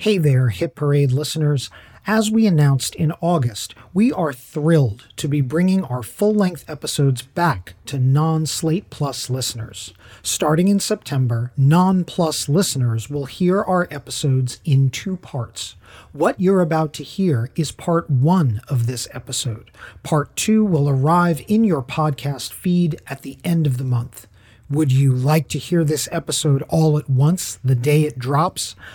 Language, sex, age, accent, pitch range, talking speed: English, male, 40-59, American, 130-170 Hz, 155 wpm